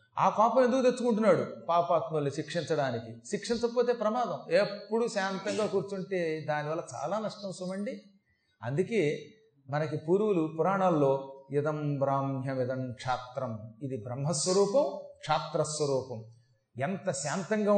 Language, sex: Telugu, male